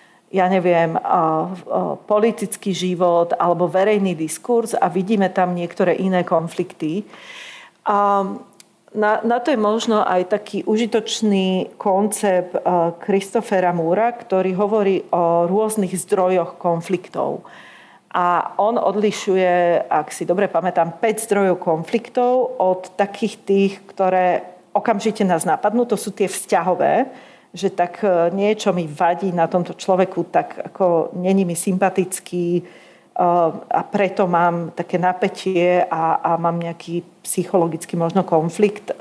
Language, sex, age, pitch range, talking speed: Slovak, female, 40-59, 175-210 Hz, 120 wpm